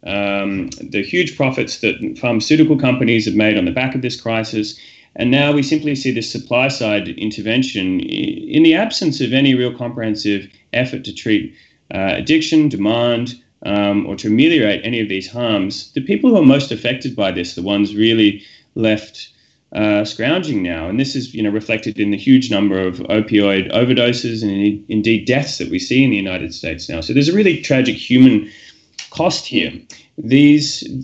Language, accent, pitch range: English, Australian, 105-135 Hz